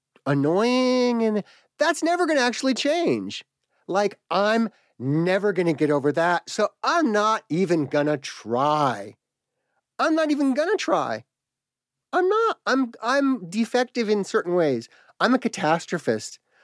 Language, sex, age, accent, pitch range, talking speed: English, male, 40-59, American, 130-215 Hz, 145 wpm